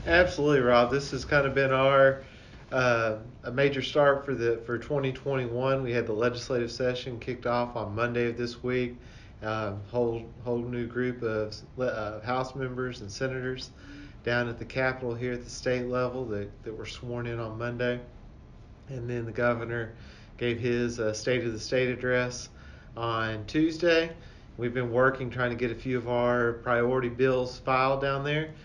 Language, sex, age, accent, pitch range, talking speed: English, male, 40-59, American, 115-130 Hz, 175 wpm